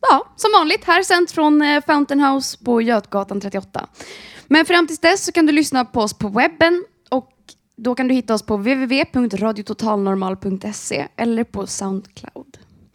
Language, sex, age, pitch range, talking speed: Swedish, female, 20-39, 215-315 Hz, 160 wpm